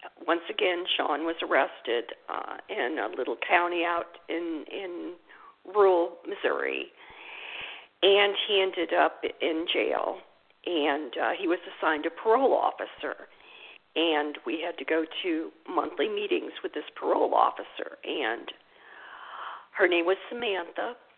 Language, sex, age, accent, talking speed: English, female, 50-69, American, 130 wpm